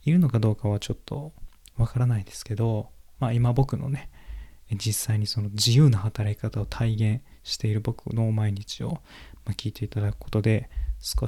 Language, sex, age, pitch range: Japanese, male, 20-39, 100-120 Hz